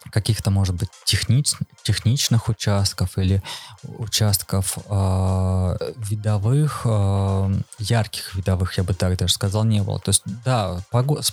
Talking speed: 120 wpm